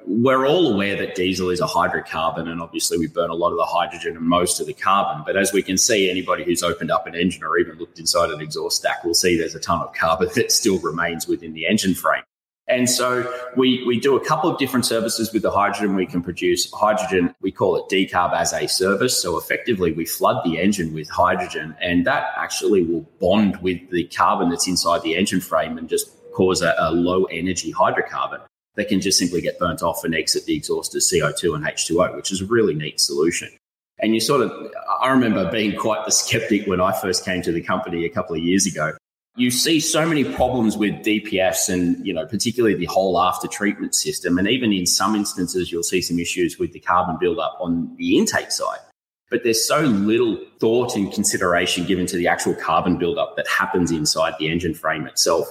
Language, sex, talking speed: English, male, 215 wpm